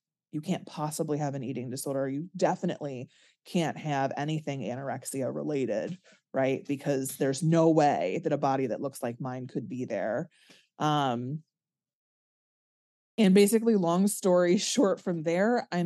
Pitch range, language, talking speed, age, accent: 140-170 Hz, English, 145 wpm, 20-39, American